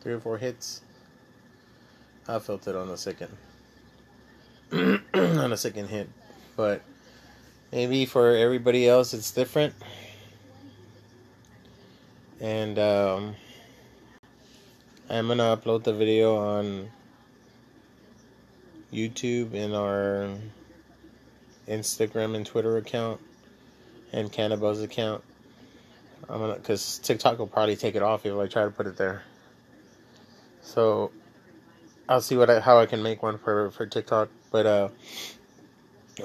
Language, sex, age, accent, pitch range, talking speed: English, male, 20-39, American, 105-125 Hz, 115 wpm